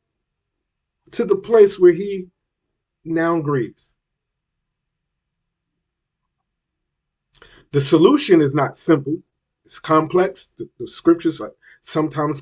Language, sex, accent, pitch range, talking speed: English, male, American, 130-175 Hz, 85 wpm